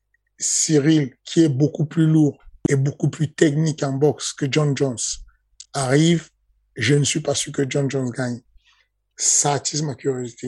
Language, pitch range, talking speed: French, 130-150 Hz, 165 wpm